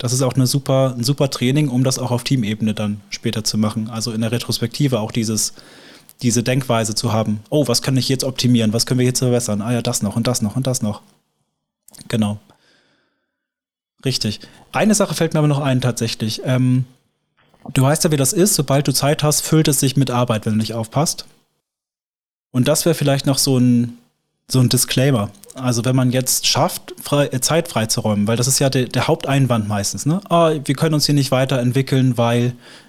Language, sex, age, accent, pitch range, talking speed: German, male, 20-39, German, 115-145 Hz, 205 wpm